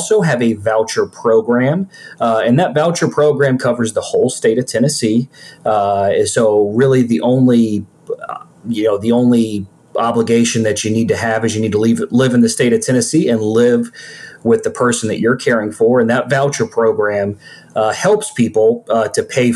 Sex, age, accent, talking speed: male, 30-49, American, 190 wpm